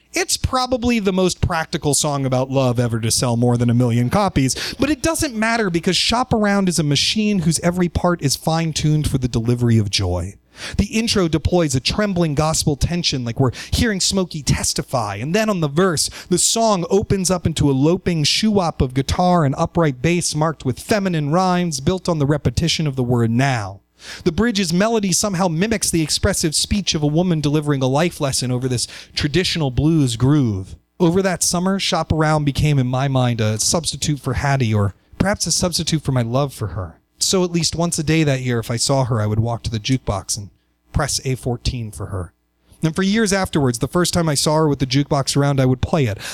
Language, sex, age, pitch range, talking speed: English, male, 30-49, 125-180 Hz, 210 wpm